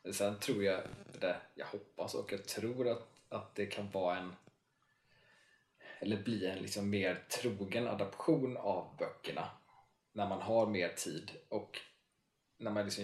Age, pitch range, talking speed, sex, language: 20-39, 100-120 Hz, 150 wpm, male, Swedish